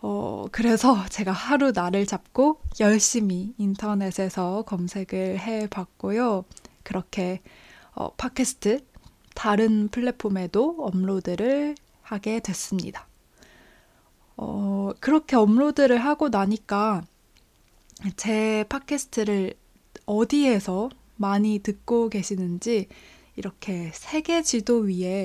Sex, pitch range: female, 190-235 Hz